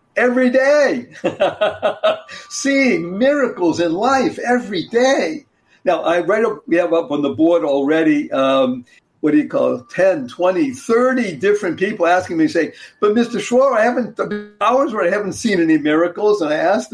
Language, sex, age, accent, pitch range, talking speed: English, male, 60-79, American, 175-275 Hz, 170 wpm